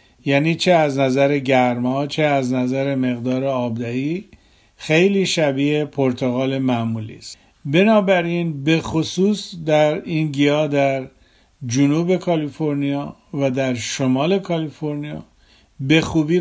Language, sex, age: Persian, male, 50-69